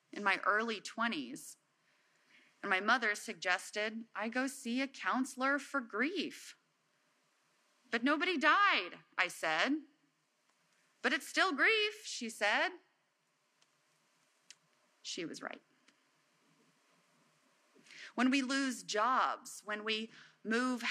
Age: 30-49